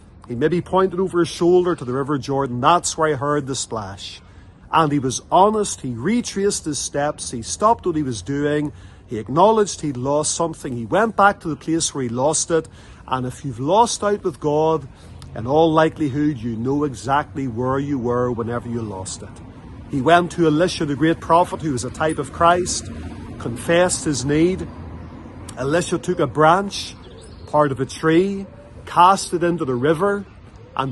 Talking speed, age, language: 185 wpm, 40-59, English